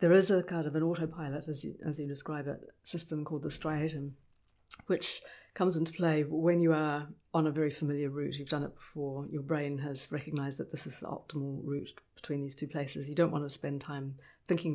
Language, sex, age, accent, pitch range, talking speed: English, female, 50-69, British, 145-165 Hz, 220 wpm